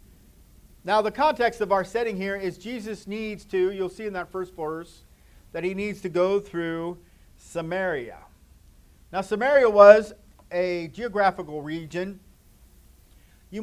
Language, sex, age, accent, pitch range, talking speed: English, male, 40-59, American, 130-180 Hz, 135 wpm